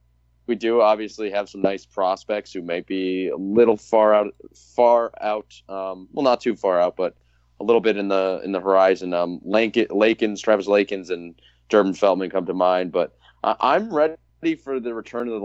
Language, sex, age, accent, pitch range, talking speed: English, male, 20-39, American, 85-110 Hz, 195 wpm